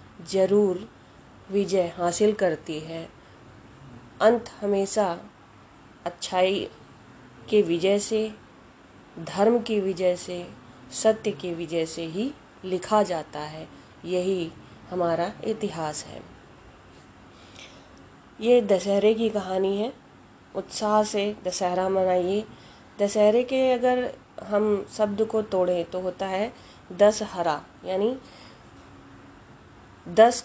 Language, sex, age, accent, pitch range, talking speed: Hindi, female, 30-49, native, 175-215 Hz, 95 wpm